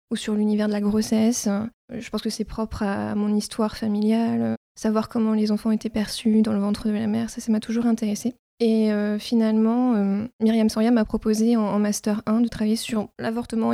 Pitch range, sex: 210-230 Hz, female